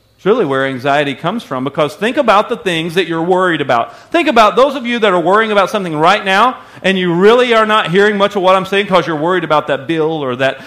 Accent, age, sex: American, 40-59, male